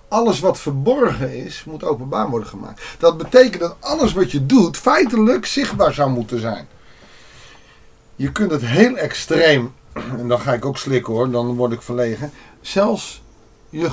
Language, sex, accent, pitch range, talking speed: Dutch, male, Dutch, 125-180 Hz, 165 wpm